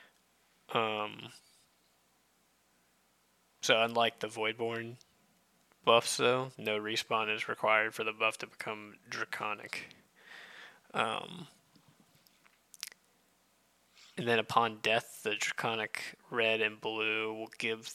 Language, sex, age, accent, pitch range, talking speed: English, male, 20-39, American, 110-115 Hz, 95 wpm